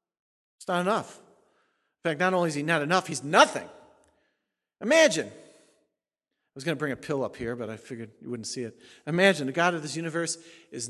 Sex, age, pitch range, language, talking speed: male, 50-69, 130-170 Hz, English, 200 wpm